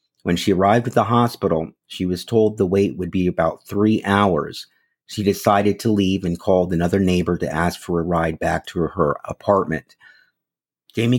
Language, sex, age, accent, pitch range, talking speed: English, male, 50-69, American, 100-120 Hz, 190 wpm